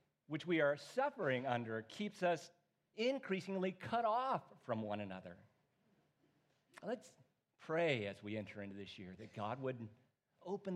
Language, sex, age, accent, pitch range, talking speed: English, male, 50-69, American, 115-175 Hz, 140 wpm